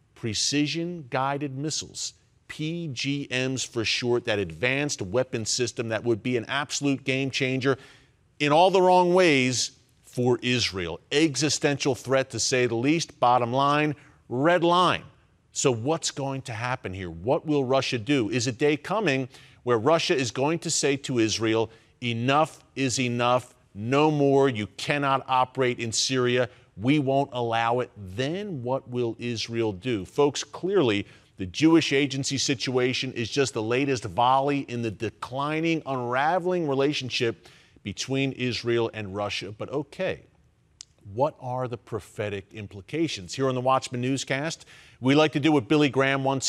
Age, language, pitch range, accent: 40-59, English, 120-145 Hz, American